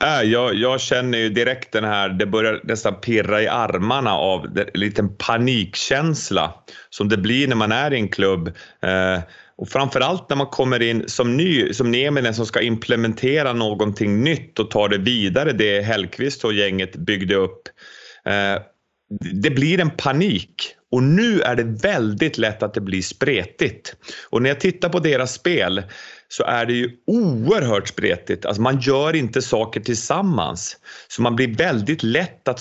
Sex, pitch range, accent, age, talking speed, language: male, 105-135 Hz, Swedish, 30-49, 170 wpm, English